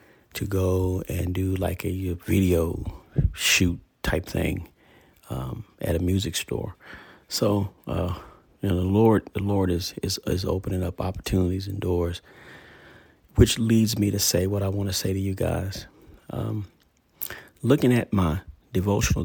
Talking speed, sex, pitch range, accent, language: 155 wpm, male, 95-110 Hz, American, English